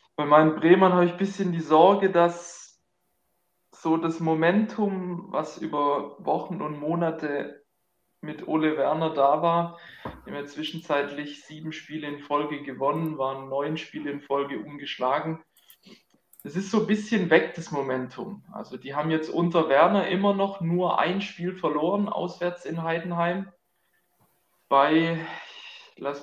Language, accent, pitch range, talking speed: German, German, 150-170 Hz, 140 wpm